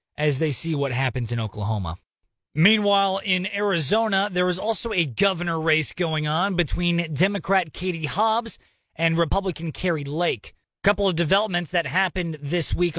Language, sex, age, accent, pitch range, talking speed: English, male, 30-49, American, 155-190 Hz, 155 wpm